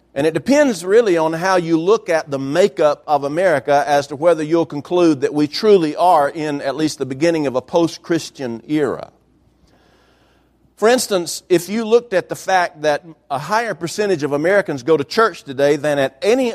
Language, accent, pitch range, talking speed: English, American, 135-175 Hz, 190 wpm